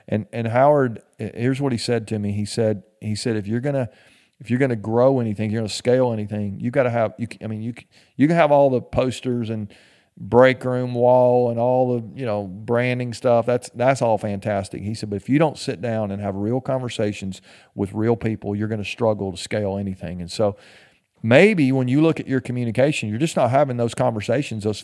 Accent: American